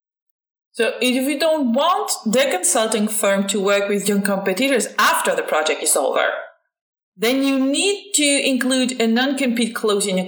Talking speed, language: 165 wpm, English